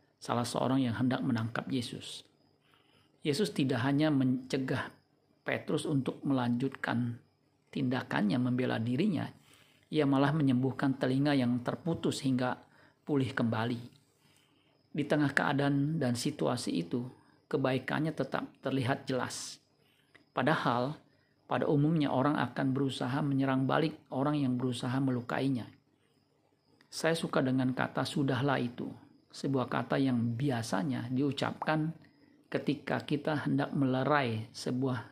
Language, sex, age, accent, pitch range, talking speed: Indonesian, male, 50-69, native, 130-145 Hz, 110 wpm